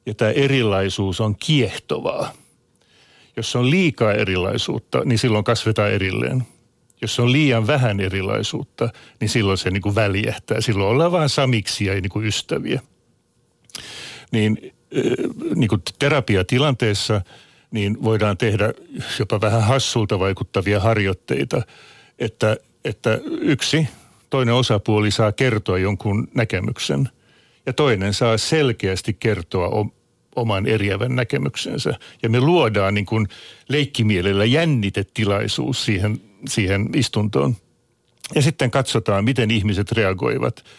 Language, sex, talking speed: Finnish, male, 105 wpm